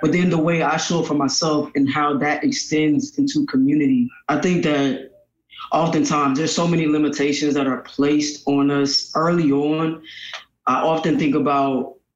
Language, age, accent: English, 20-39, American